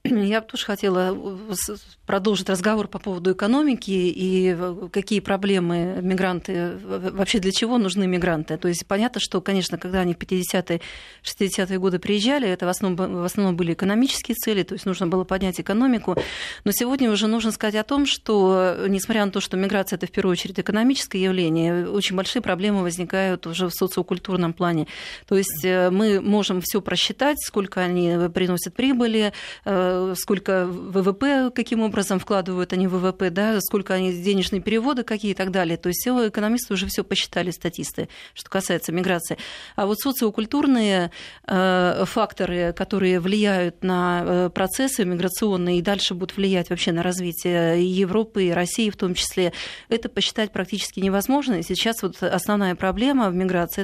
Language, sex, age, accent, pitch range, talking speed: Russian, female, 30-49, native, 180-210 Hz, 155 wpm